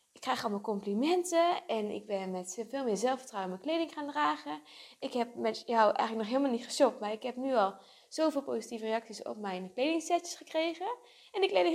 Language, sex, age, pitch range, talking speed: Dutch, female, 20-39, 205-285 Hz, 200 wpm